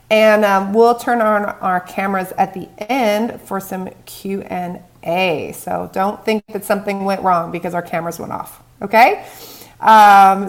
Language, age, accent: English, 30-49, American